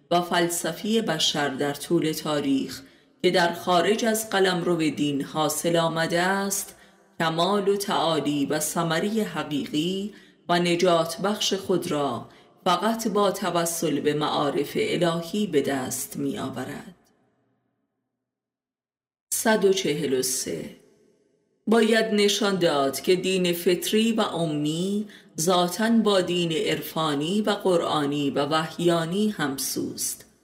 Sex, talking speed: female, 105 wpm